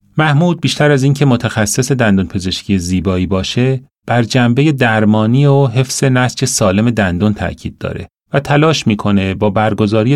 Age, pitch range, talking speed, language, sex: 30-49, 100-135 Hz, 150 wpm, Persian, male